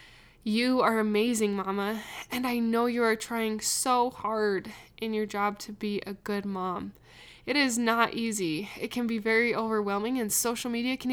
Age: 10-29